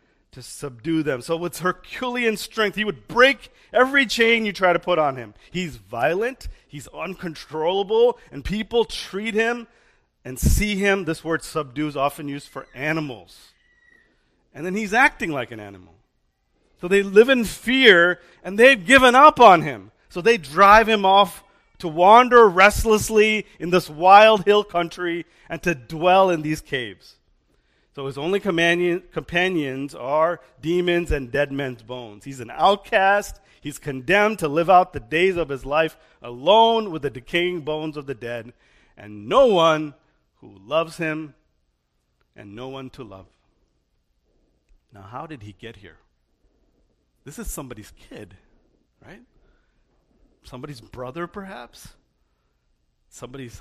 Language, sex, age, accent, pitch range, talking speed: English, male, 40-59, American, 140-200 Hz, 145 wpm